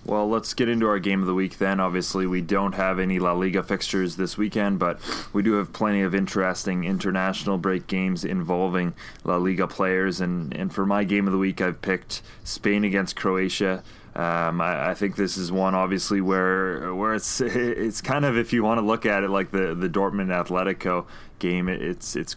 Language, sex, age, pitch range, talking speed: English, male, 20-39, 90-100 Hz, 205 wpm